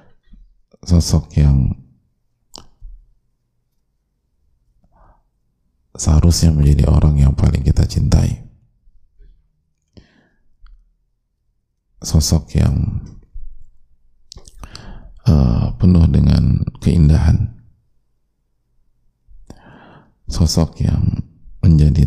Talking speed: 50 wpm